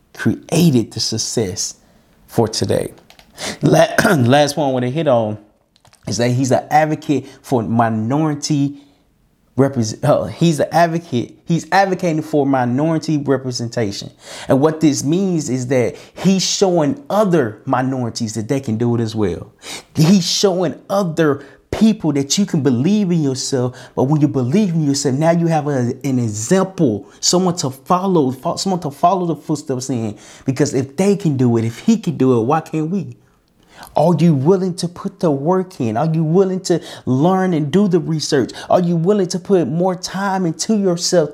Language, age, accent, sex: English, 30-49, American, male